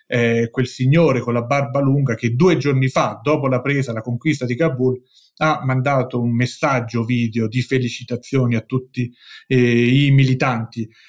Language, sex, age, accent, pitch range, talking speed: Italian, male, 30-49, native, 125-150 Hz, 155 wpm